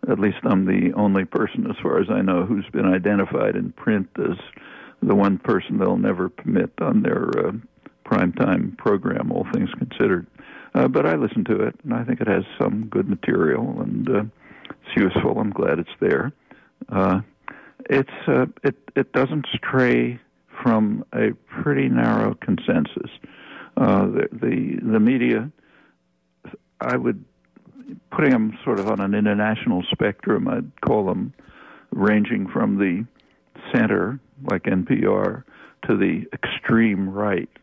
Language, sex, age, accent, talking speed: English, male, 60-79, American, 150 wpm